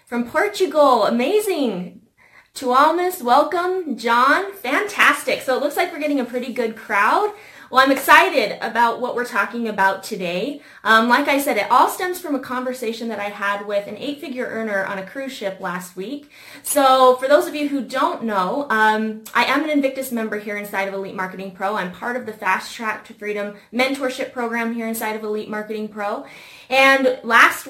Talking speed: 190 wpm